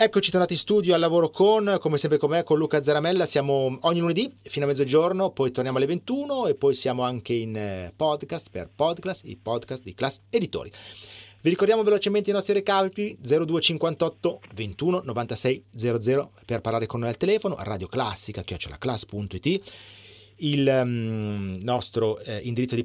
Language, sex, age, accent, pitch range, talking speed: Italian, male, 30-49, native, 110-165 Hz, 160 wpm